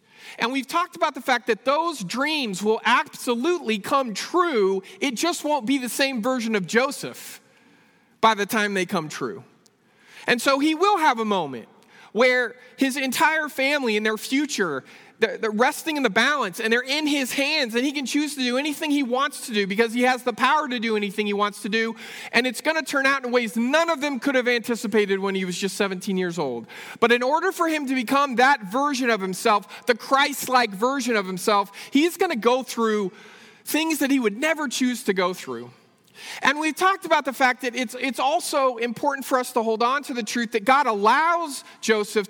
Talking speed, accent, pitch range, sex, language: 210 wpm, American, 225-290 Hz, male, English